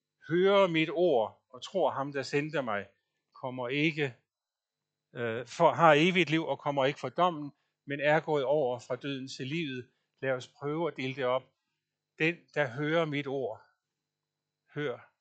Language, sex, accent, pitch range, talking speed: Danish, male, native, 130-165 Hz, 165 wpm